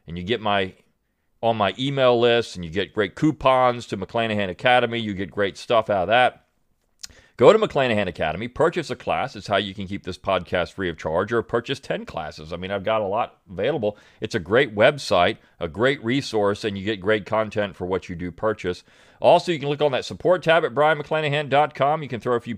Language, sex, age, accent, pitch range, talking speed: English, male, 40-59, American, 100-140 Hz, 220 wpm